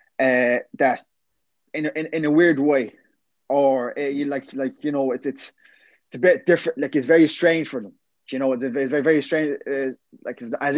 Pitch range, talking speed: 135-185 Hz, 205 wpm